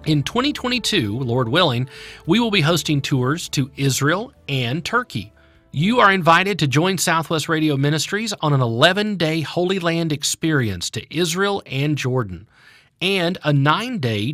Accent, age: American, 40-59